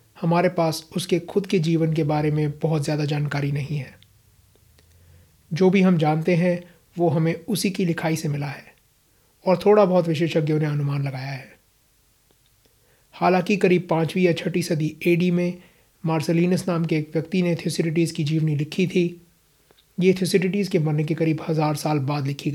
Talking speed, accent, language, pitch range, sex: 170 wpm, native, Hindi, 150-175 Hz, male